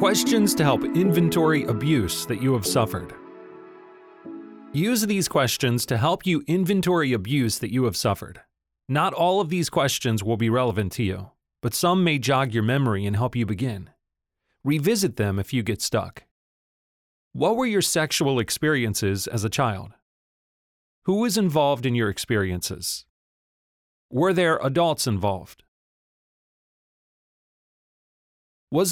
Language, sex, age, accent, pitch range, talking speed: English, male, 30-49, American, 110-165 Hz, 135 wpm